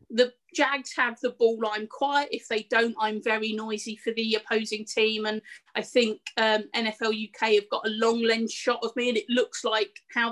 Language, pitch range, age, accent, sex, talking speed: English, 215-255 Hz, 30-49, British, female, 210 wpm